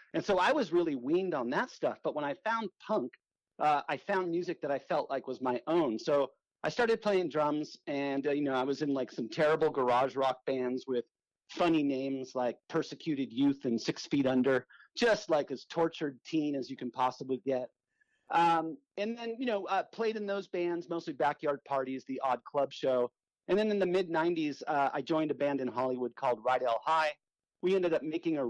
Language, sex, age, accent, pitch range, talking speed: English, male, 40-59, American, 135-175 Hz, 210 wpm